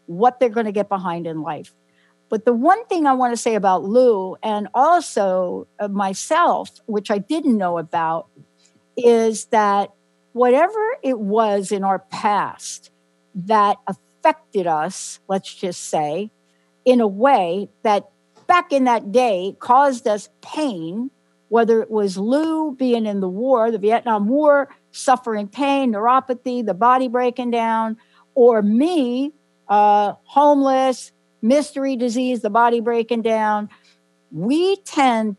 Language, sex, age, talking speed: English, female, 60-79, 135 wpm